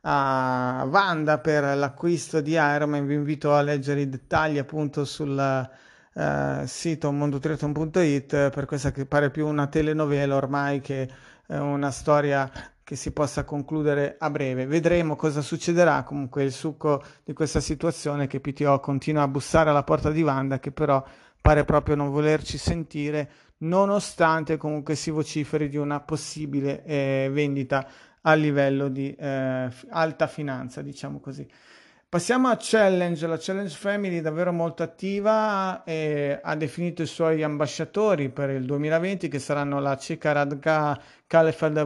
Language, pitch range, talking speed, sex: Italian, 140-160 Hz, 145 wpm, male